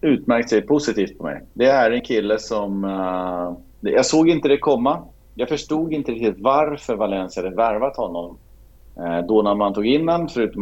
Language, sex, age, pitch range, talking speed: Swedish, male, 40-59, 95-125 Hz, 185 wpm